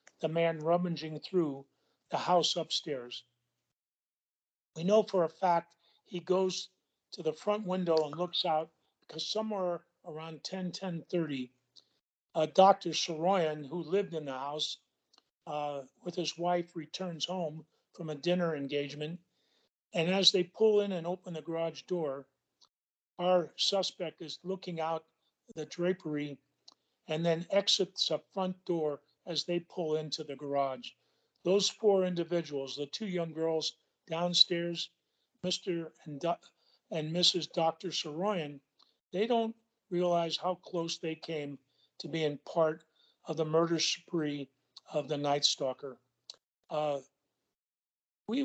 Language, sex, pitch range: English, male, 150-180 Hz